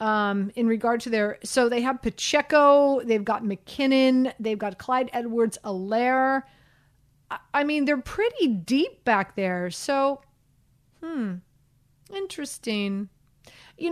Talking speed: 125 wpm